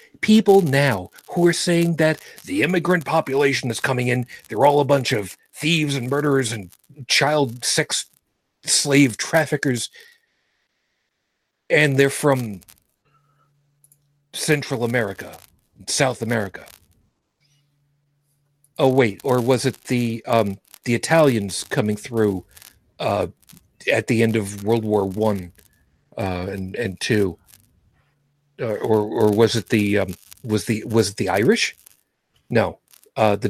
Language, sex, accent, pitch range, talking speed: English, male, American, 105-145 Hz, 125 wpm